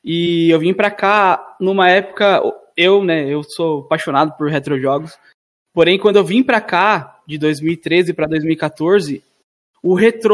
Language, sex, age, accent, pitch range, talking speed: Portuguese, male, 20-39, Brazilian, 165-210 Hz, 145 wpm